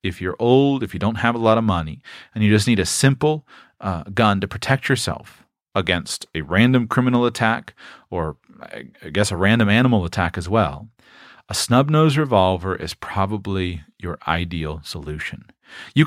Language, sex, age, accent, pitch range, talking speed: English, male, 40-59, American, 100-140 Hz, 170 wpm